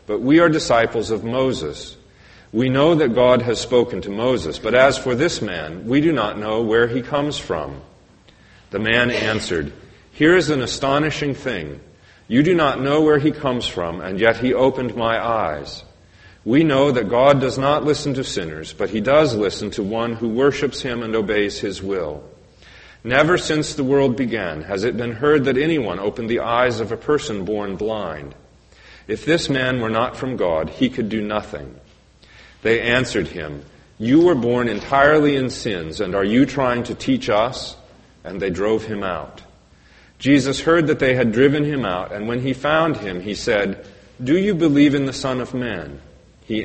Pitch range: 105-140 Hz